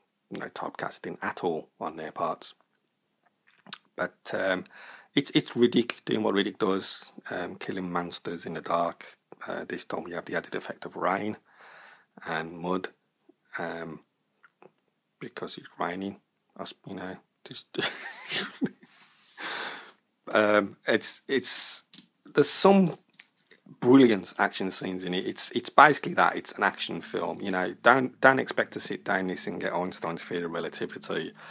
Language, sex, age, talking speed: English, male, 30-49, 145 wpm